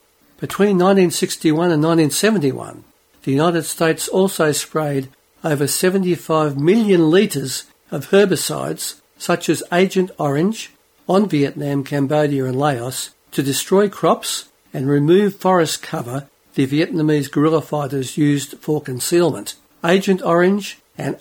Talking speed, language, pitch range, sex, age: 115 wpm, English, 140-175 Hz, male, 60-79